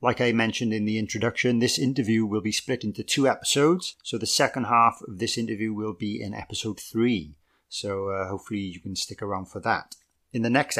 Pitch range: 105-130 Hz